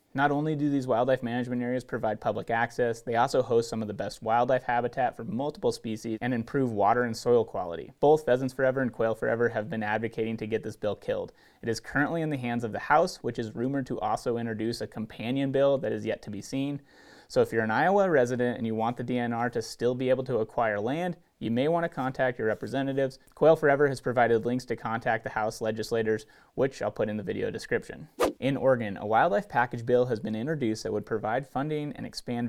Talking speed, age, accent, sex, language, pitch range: 225 wpm, 30-49, American, male, English, 115-140 Hz